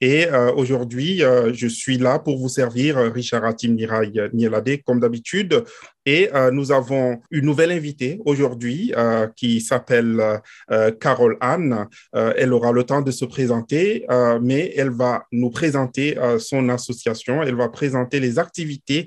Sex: male